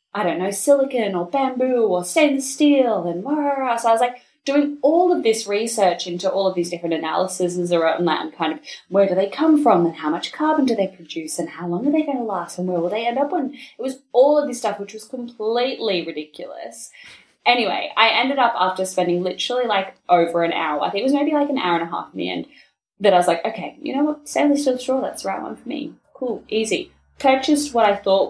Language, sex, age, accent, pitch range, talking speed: English, female, 10-29, Australian, 180-285 Hz, 250 wpm